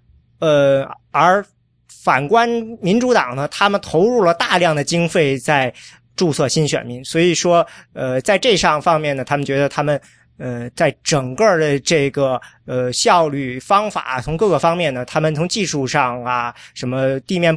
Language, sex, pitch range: Chinese, male, 130-170 Hz